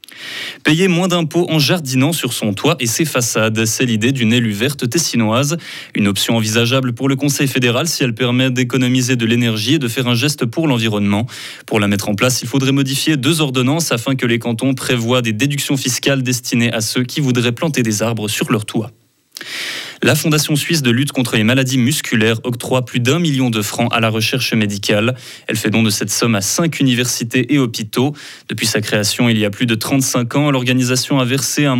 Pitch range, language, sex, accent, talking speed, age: 110-130 Hz, French, male, French, 210 wpm, 20-39